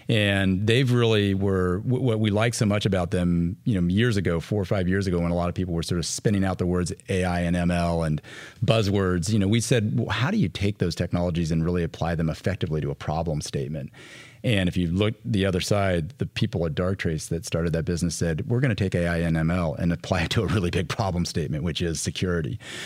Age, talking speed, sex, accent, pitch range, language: 40-59, 240 wpm, male, American, 85-110 Hz, English